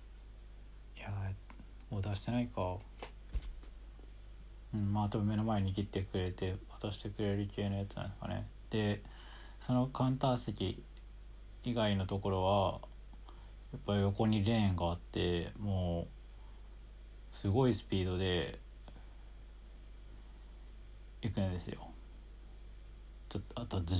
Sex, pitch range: male, 90-110 Hz